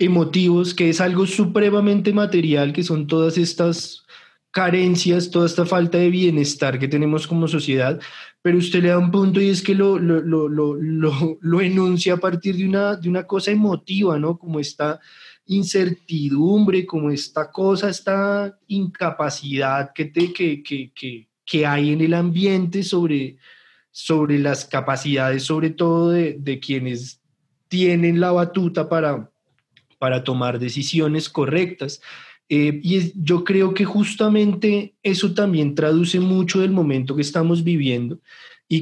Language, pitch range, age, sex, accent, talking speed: Spanish, 145-185 Hz, 20-39, male, Colombian, 150 wpm